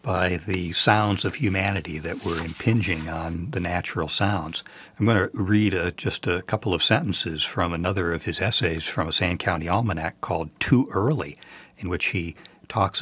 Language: English